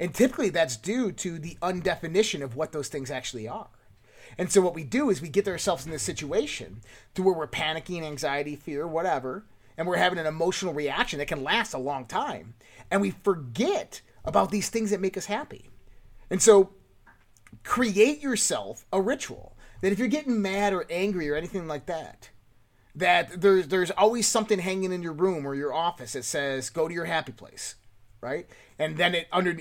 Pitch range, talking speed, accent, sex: 135-190 Hz, 195 wpm, American, male